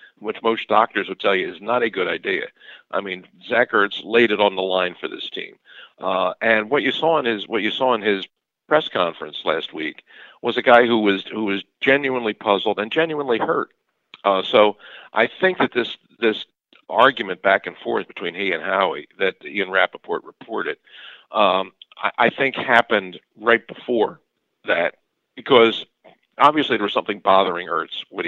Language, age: English, 50-69